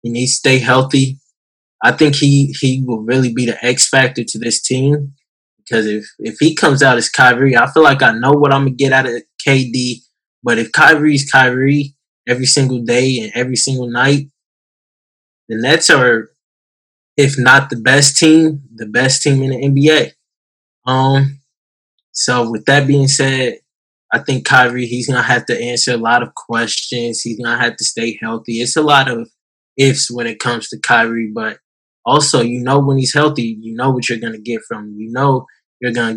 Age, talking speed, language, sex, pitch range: 10-29, 190 wpm, English, male, 115-135 Hz